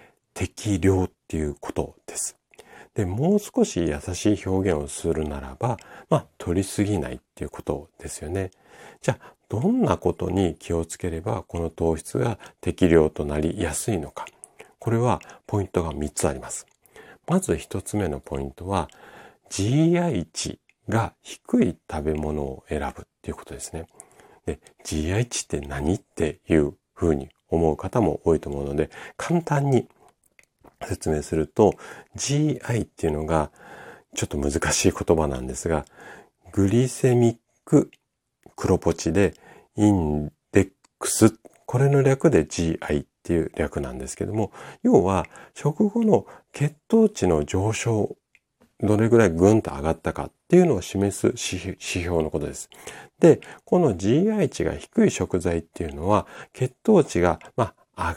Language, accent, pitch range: Japanese, native, 80-115 Hz